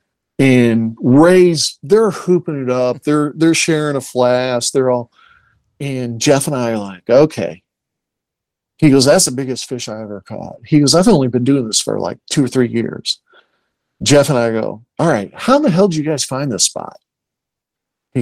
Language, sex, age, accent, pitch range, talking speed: English, male, 50-69, American, 125-165 Hz, 195 wpm